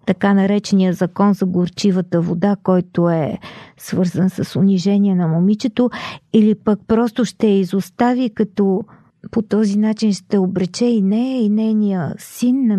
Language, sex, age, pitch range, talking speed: Bulgarian, female, 40-59, 190-235 Hz, 145 wpm